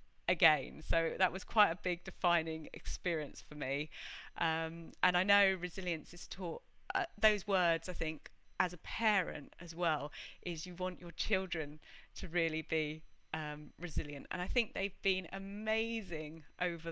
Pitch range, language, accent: 160-180 Hz, English, British